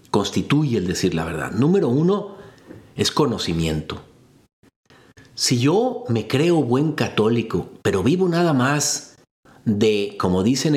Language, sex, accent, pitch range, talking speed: Spanish, male, Mexican, 105-145 Hz, 125 wpm